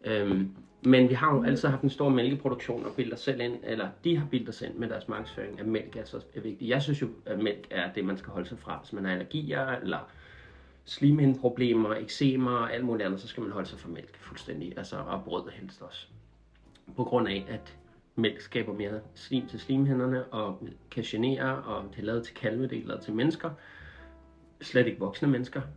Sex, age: male, 30-49